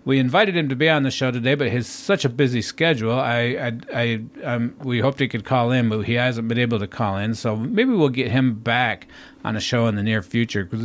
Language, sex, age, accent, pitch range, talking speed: English, male, 50-69, American, 115-145 Hz, 260 wpm